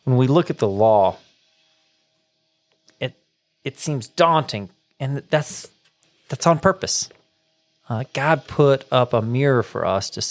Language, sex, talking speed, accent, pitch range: English, male, 140 wpm, American, 110-135 Hz